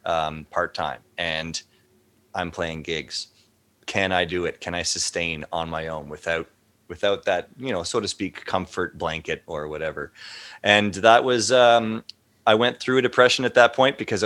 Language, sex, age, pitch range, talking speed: English, male, 30-49, 90-110 Hz, 175 wpm